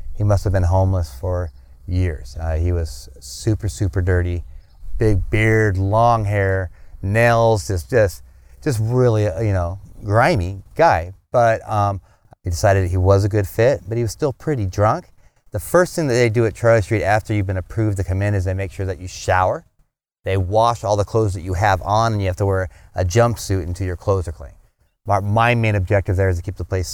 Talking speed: 210 wpm